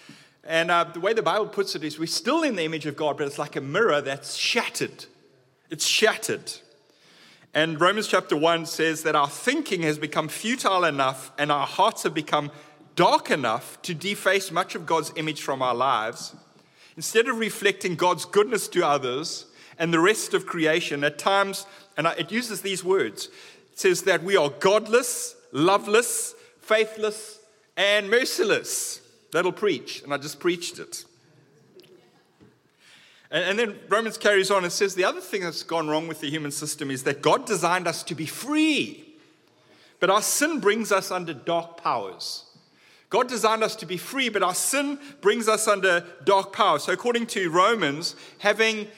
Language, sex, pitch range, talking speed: English, male, 160-225 Hz, 175 wpm